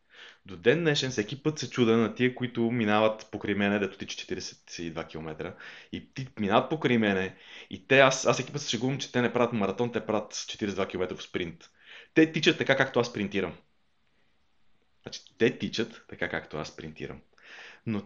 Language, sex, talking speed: Bulgarian, male, 175 wpm